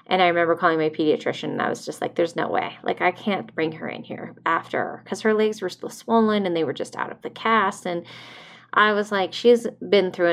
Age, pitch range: 30-49, 170-225 Hz